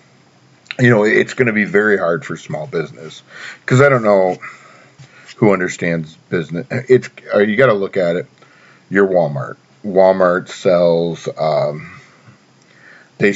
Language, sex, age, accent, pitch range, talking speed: English, male, 50-69, American, 85-115 Hz, 135 wpm